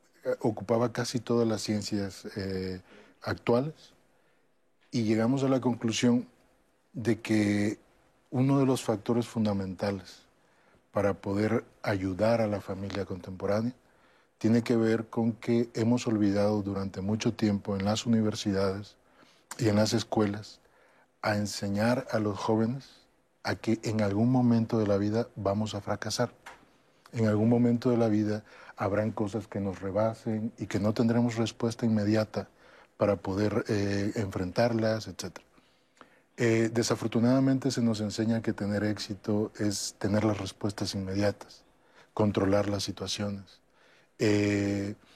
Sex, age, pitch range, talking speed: male, 40-59, 100-115 Hz, 130 wpm